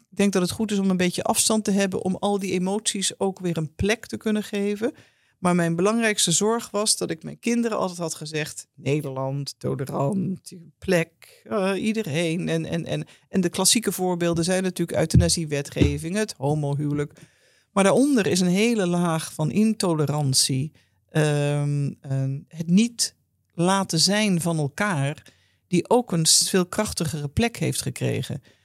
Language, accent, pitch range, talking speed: Dutch, Dutch, 155-200 Hz, 160 wpm